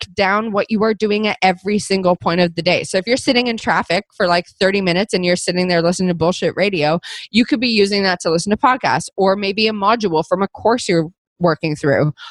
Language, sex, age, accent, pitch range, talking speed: English, female, 20-39, American, 175-220 Hz, 240 wpm